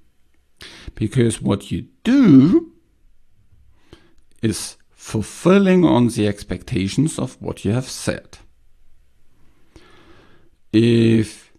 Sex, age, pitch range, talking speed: male, 50-69, 100-135 Hz, 80 wpm